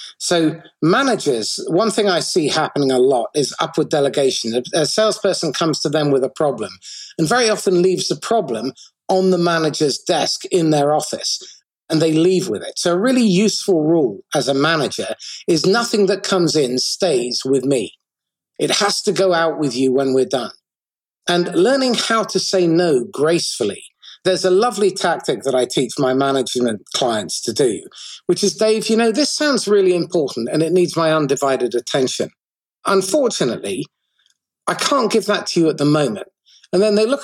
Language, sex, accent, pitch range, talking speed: English, male, British, 150-205 Hz, 180 wpm